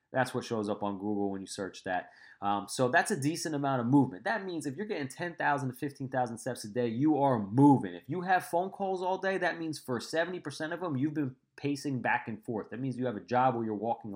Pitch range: 110-145 Hz